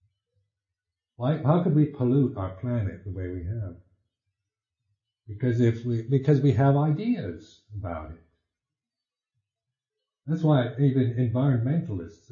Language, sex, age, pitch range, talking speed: English, male, 60-79, 100-125 Hz, 115 wpm